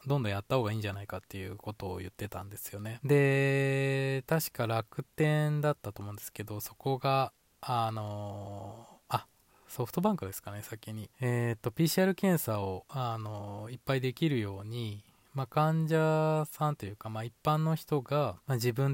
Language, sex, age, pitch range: Japanese, male, 20-39, 100-135 Hz